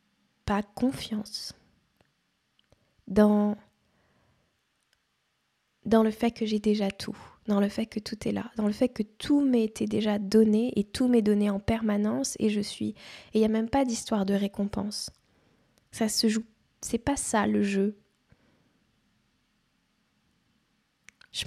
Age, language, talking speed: 20-39, French, 145 wpm